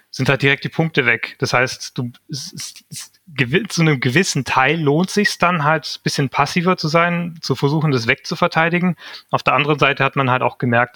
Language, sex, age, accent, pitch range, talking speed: German, male, 30-49, German, 125-150 Hz, 215 wpm